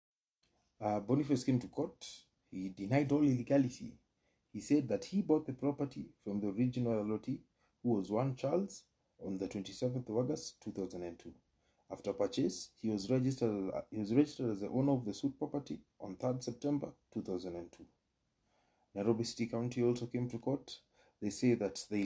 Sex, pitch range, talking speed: male, 100-125 Hz, 165 wpm